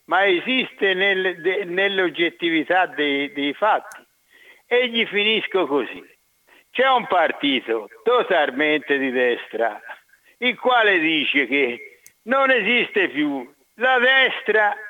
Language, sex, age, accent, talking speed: Italian, male, 60-79, native, 100 wpm